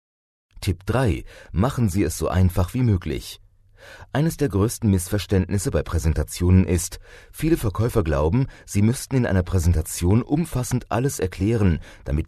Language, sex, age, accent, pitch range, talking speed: German, male, 30-49, German, 85-110 Hz, 135 wpm